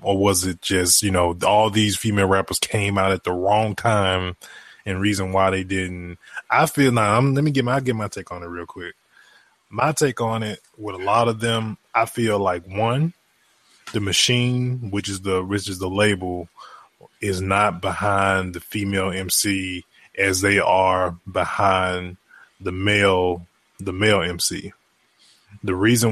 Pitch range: 95-105 Hz